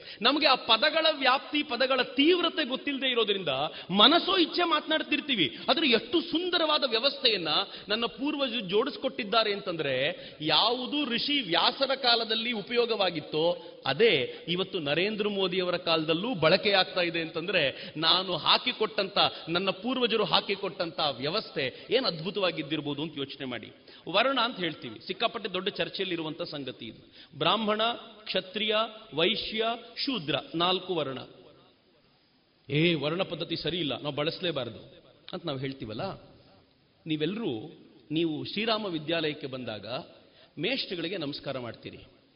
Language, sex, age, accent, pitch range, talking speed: Kannada, male, 30-49, native, 165-250 Hz, 105 wpm